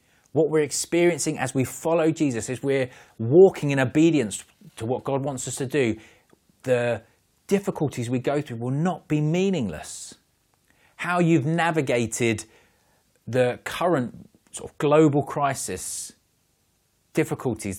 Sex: male